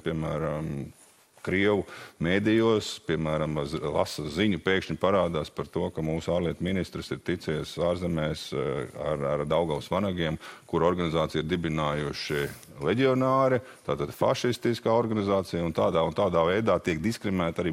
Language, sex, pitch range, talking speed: English, male, 85-100 Hz, 120 wpm